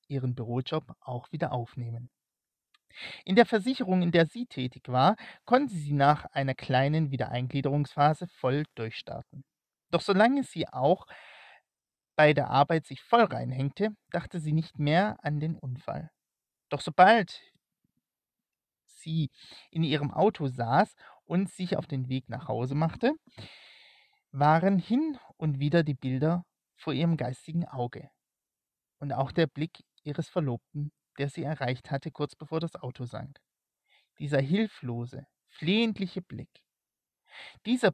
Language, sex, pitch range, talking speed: German, male, 135-175 Hz, 130 wpm